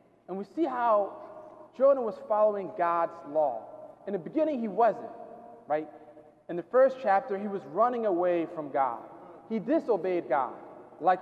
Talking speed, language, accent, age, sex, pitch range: 155 wpm, German, American, 30-49, male, 185-240 Hz